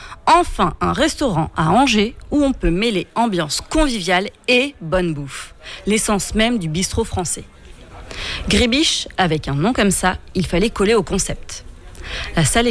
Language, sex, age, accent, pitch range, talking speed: French, female, 30-49, French, 170-230 Hz, 150 wpm